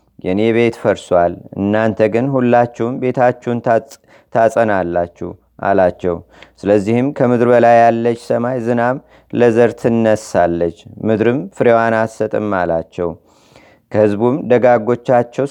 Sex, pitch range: male, 105-120 Hz